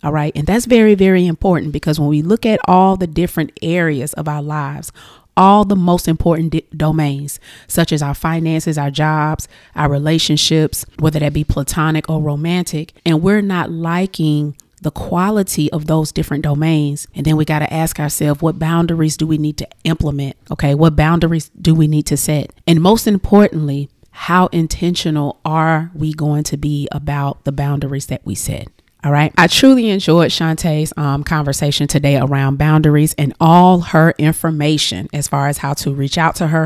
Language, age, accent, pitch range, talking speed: English, 30-49, American, 145-170 Hz, 180 wpm